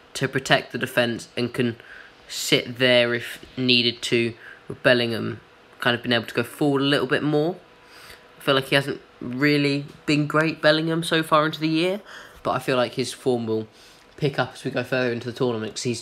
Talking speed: 205 wpm